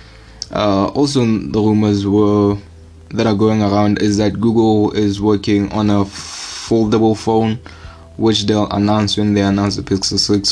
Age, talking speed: 20-39, 155 wpm